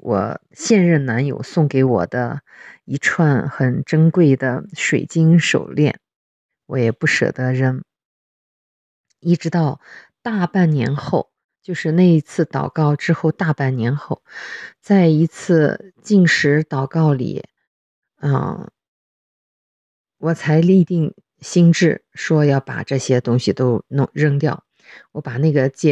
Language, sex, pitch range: English, female, 135-165 Hz